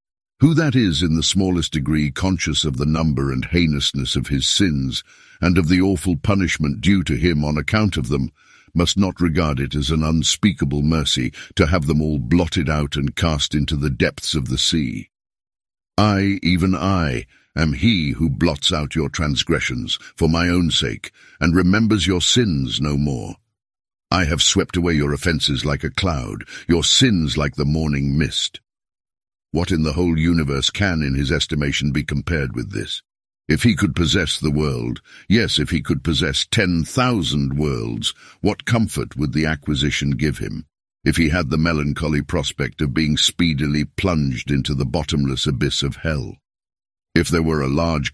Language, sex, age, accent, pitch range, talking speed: English, male, 60-79, British, 70-85 Hz, 175 wpm